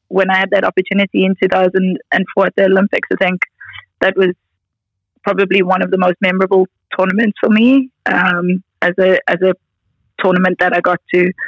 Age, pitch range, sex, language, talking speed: 20-39, 180-210 Hz, female, English, 170 wpm